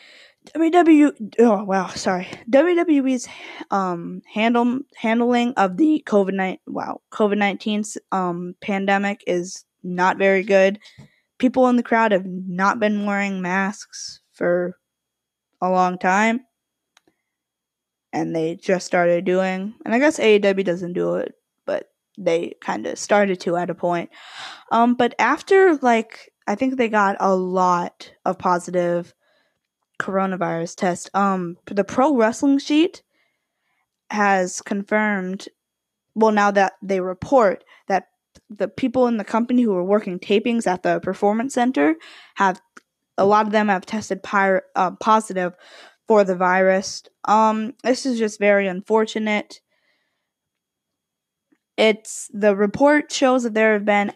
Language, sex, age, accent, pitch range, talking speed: English, female, 10-29, American, 185-235 Hz, 135 wpm